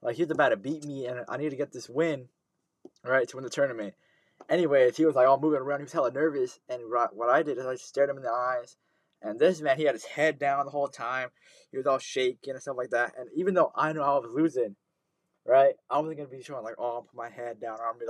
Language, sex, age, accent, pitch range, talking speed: English, male, 20-39, American, 125-155 Hz, 290 wpm